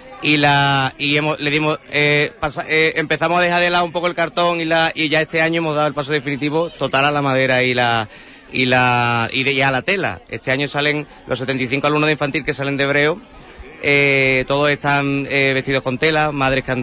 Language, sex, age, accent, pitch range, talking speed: Spanish, male, 30-49, Spanish, 130-160 Hz, 230 wpm